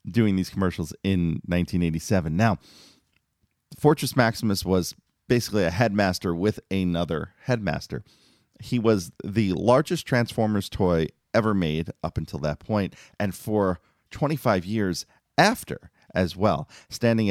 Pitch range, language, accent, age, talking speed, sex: 85-110 Hz, English, American, 30-49, 120 wpm, male